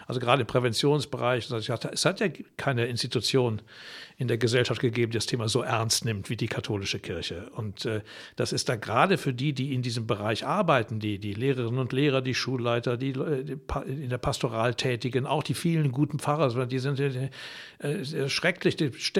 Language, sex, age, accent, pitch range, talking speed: German, male, 60-79, German, 130-170 Hz, 190 wpm